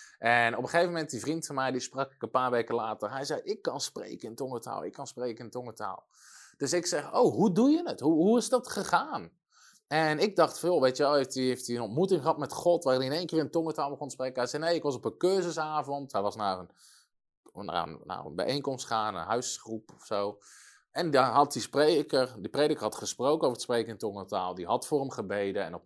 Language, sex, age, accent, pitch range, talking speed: Dutch, male, 20-39, Dutch, 125-160 Hz, 260 wpm